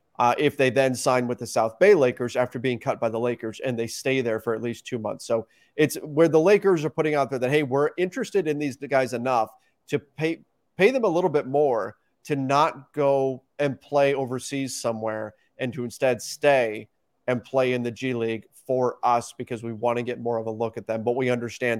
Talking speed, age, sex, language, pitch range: 230 wpm, 30-49, male, English, 115-135 Hz